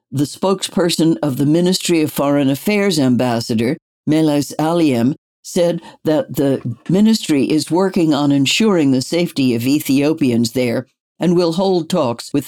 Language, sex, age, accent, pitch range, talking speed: English, female, 60-79, American, 135-180 Hz, 140 wpm